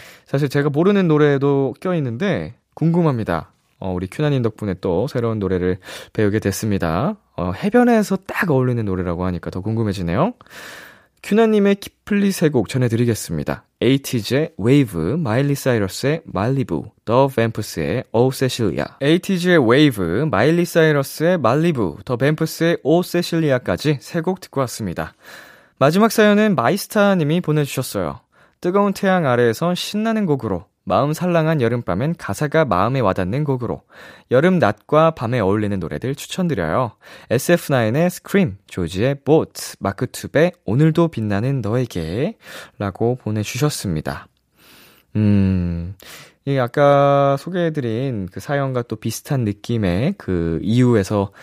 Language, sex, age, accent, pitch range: Korean, male, 20-39, native, 100-155 Hz